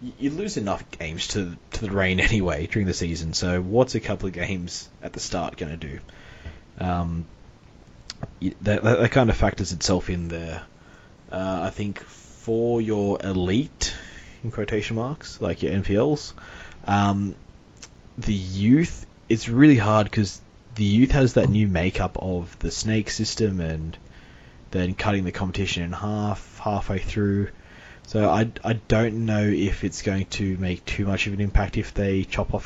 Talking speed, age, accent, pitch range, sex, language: 165 wpm, 20-39, Australian, 90-110 Hz, male, English